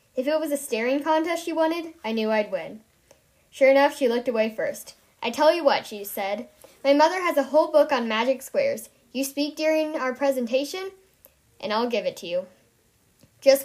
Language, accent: English, American